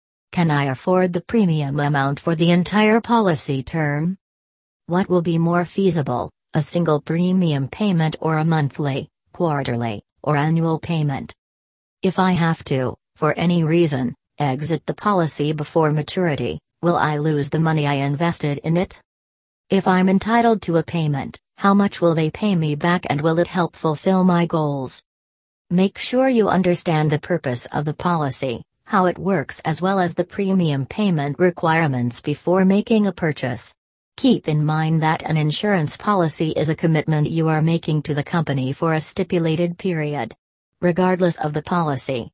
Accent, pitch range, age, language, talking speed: American, 145-180 Hz, 40-59, English, 165 wpm